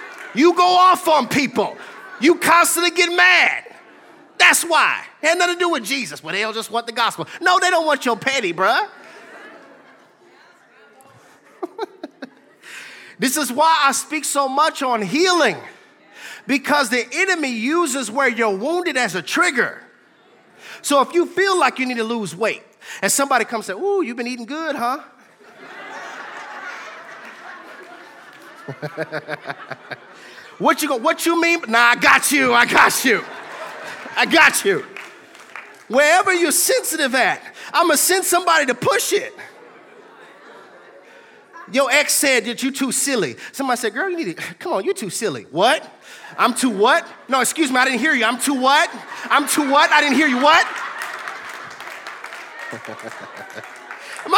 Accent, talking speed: American, 155 wpm